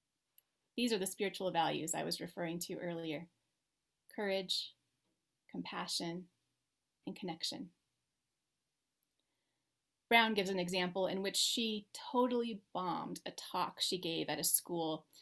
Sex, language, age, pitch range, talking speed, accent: female, English, 30-49, 180-240 Hz, 120 wpm, American